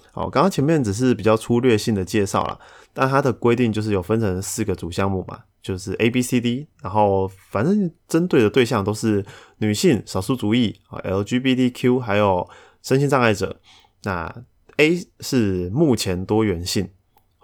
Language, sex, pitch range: Chinese, male, 95-120 Hz